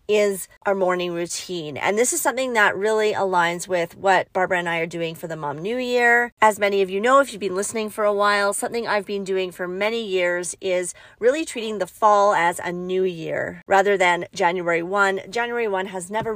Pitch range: 175-215 Hz